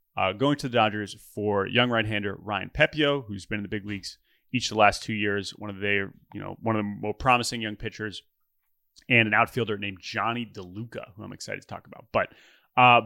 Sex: male